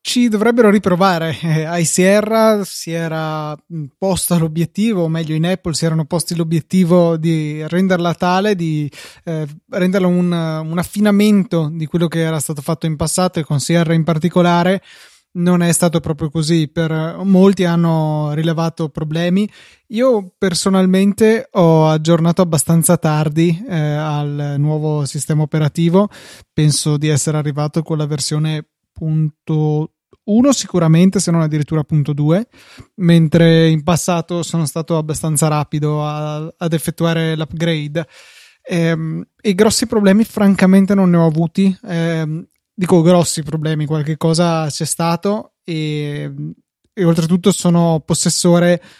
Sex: male